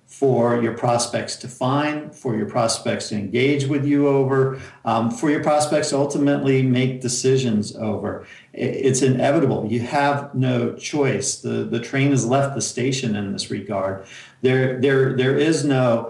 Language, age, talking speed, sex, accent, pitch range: English, 50-69, 160 wpm, male, American, 115-130 Hz